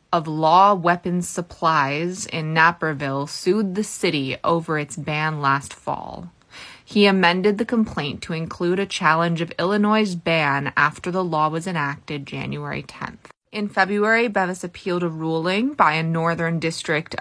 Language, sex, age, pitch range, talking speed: English, female, 20-39, 155-195 Hz, 145 wpm